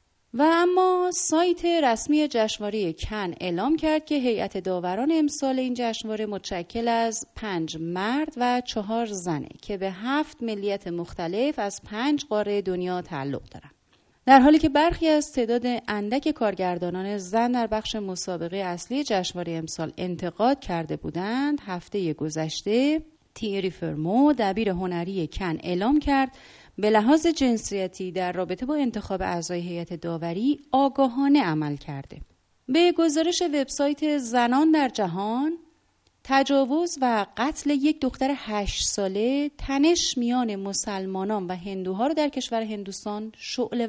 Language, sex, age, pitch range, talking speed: Persian, female, 30-49, 190-275 Hz, 130 wpm